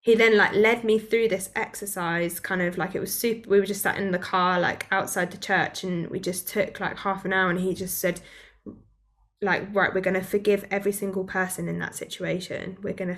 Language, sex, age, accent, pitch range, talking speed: English, female, 10-29, British, 180-200 Hz, 230 wpm